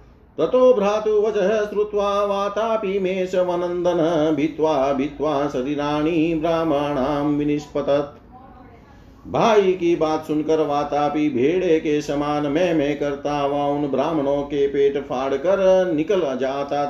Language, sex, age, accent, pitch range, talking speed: Hindi, male, 50-69, native, 145-185 Hz, 65 wpm